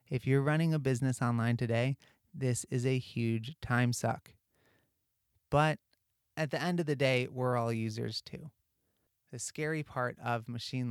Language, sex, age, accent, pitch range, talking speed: English, male, 30-49, American, 115-135 Hz, 160 wpm